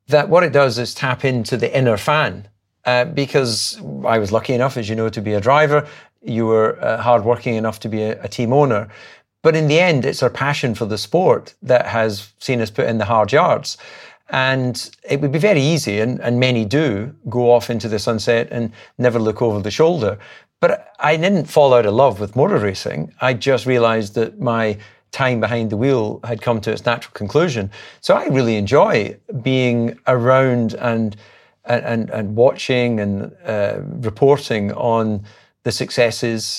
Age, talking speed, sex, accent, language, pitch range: 40-59, 190 wpm, male, British, English, 110-130 Hz